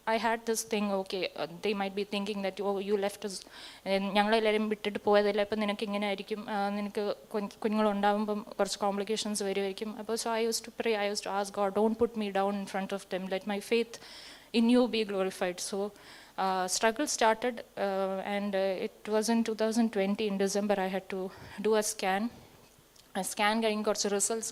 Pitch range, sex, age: 190-220 Hz, female, 20-39